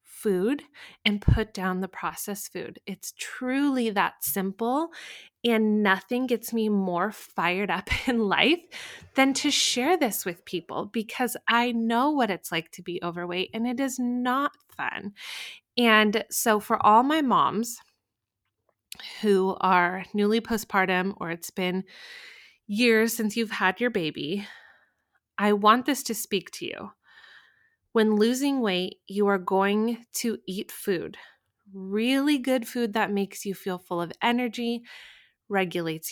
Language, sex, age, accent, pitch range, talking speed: English, female, 20-39, American, 190-235 Hz, 145 wpm